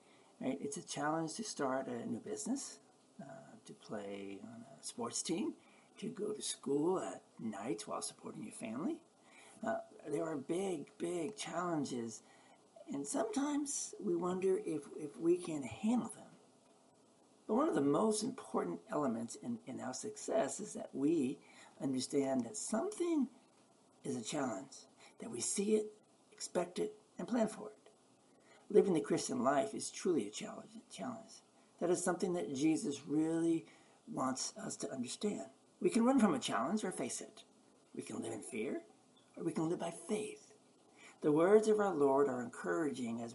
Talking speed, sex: 165 wpm, male